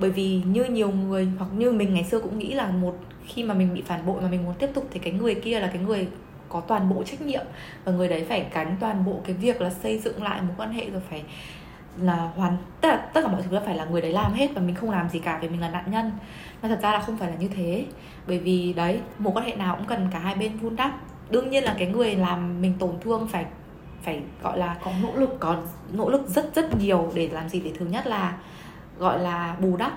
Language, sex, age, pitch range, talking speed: Vietnamese, female, 20-39, 175-220 Hz, 275 wpm